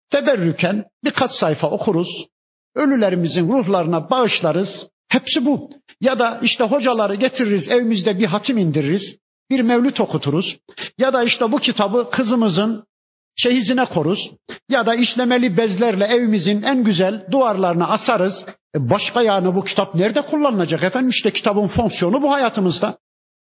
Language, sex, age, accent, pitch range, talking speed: Turkish, male, 50-69, native, 165-230 Hz, 130 wpm